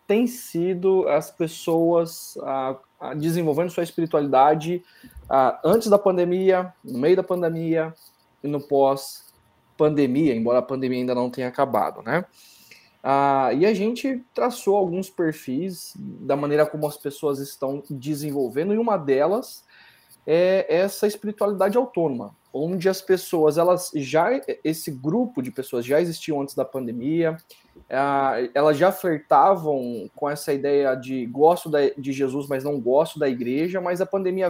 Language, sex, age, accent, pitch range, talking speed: Portuguese, male, 20-39, Brazilian, 140-190 Hz, 140 wpm